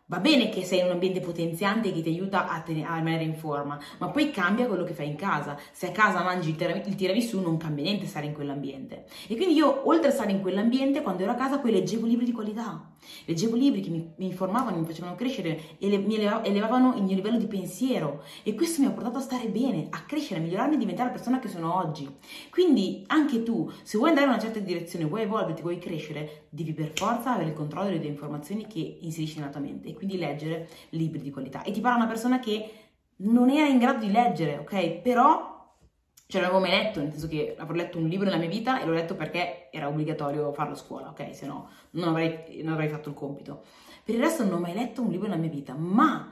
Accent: native